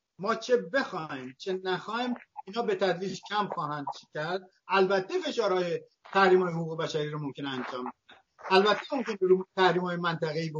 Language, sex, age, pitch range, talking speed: Persian, male, 50-69, 155-215 Hz, 160 wpm